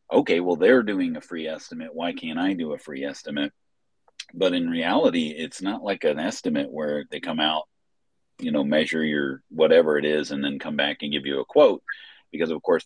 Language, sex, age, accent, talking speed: English, male, 40-59, American, 210 wpm